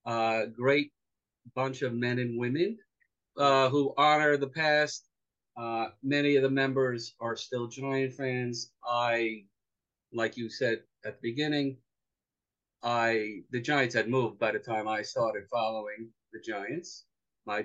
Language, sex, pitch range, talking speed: English, male, 115-135 Hz, 145 wpm